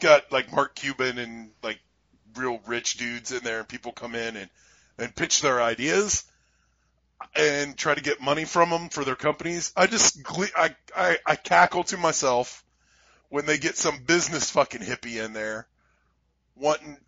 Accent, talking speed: American, 170 wpm